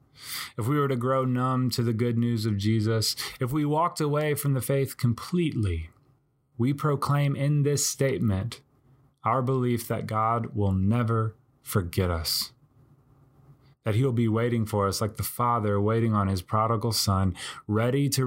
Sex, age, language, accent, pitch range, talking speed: male, 20-39, English, American, 105-135 Hz, 160 wpm